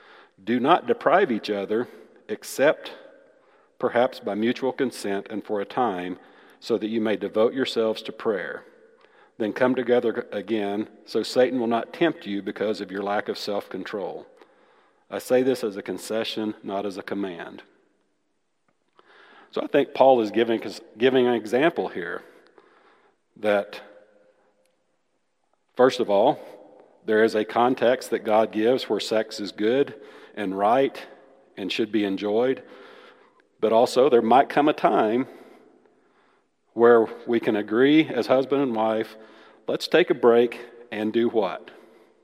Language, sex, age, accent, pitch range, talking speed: English, male, 40-59, American, 105-155 Hz, 145 wpm